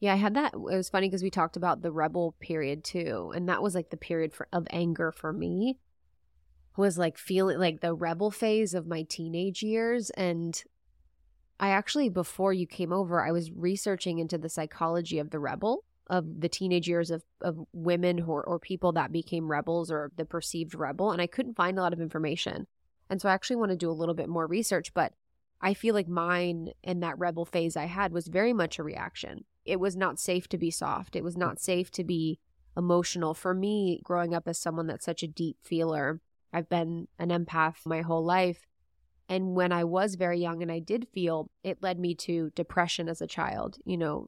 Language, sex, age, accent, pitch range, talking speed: English, female, 20-39, American, 165-185 Hz, 215 wpm